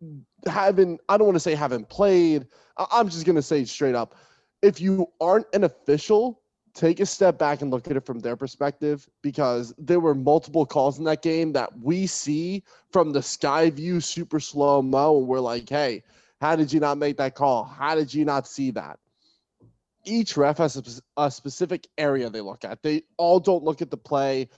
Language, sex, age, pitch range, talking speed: English, male, 20-39, 130-165 Hz, 200 wpm